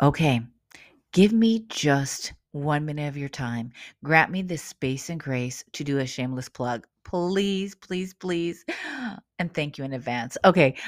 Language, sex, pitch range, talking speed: English, female, 140-190 Hz, 160 wpm